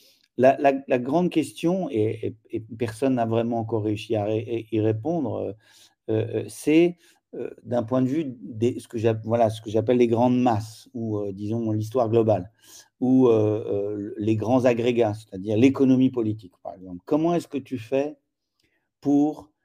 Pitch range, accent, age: 110-130 Hz, French, 50-69